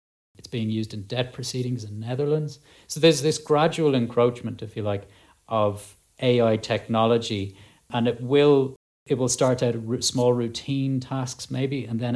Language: English